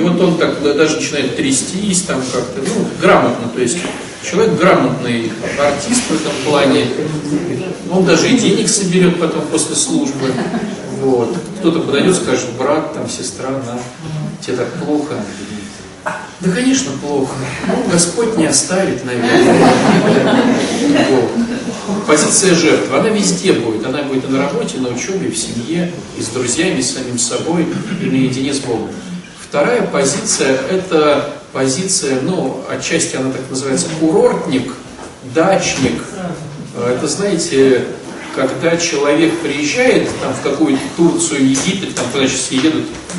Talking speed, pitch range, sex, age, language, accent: 140 wpm, 135-185 Hz, male, 40-59, Russian, native